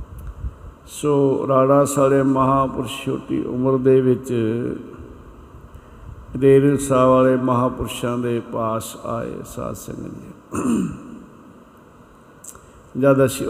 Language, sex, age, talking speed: Punjabi, male, 60-79, 80 wpm